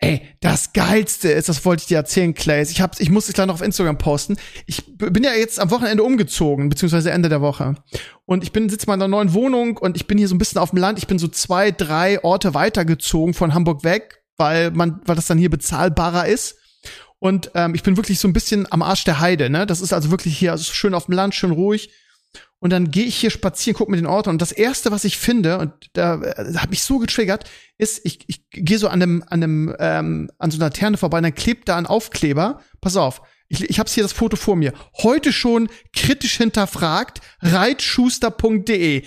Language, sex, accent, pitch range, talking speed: German, male, German, 160-205 Hz, 235 wpm